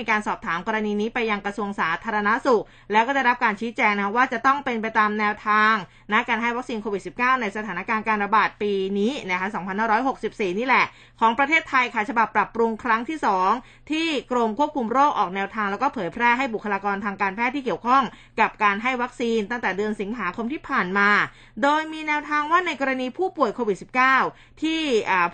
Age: 20-39